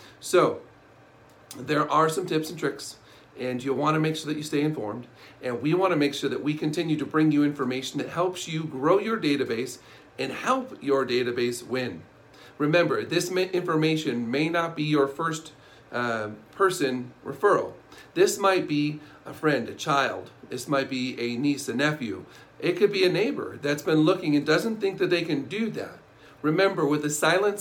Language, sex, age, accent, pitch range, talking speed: English, male, 40-59, American, 135-170 Hz, 185 wpm